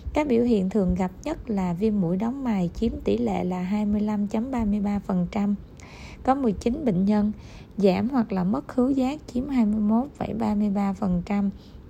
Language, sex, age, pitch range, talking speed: Vietnamese, female, 20-39, 195-235 Hz, 140 wpm